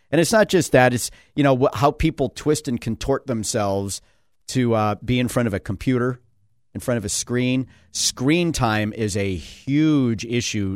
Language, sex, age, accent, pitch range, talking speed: English, male, 50-69, American, 105-135 Hz, 185 wpm